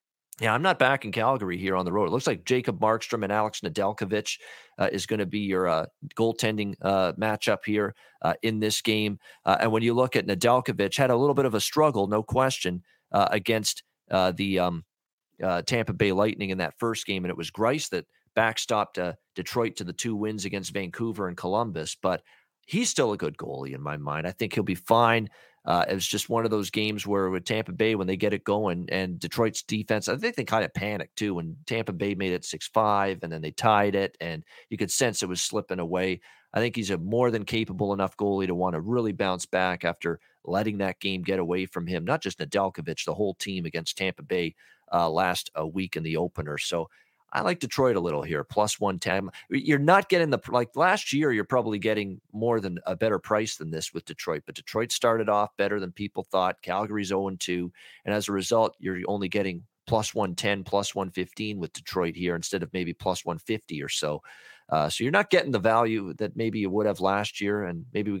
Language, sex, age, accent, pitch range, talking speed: English, male, 40-59, American, 95-110 Hz, 225 wpm